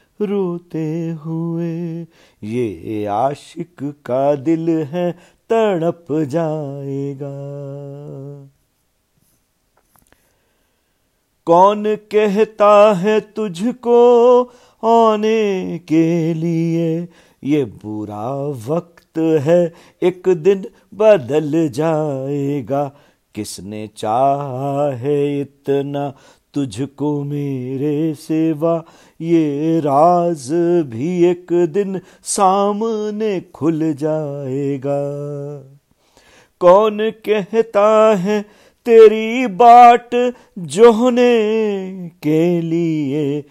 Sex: male